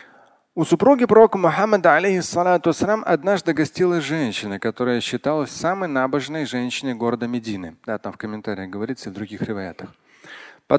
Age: 30-49